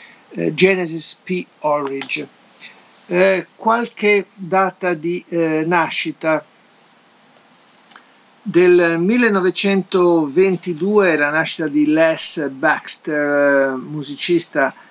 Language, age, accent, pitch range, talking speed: Italian, 50-69, native, 130-170 Hz, 70 wpm